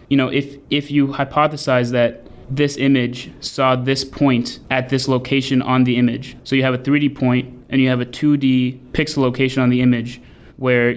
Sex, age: male, 20-39